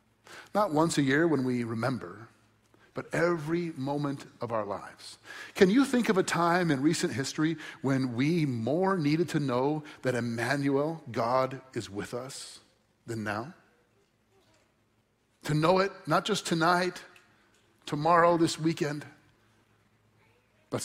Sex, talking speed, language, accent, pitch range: male, 130 wpm, English, American, 130-175 Hz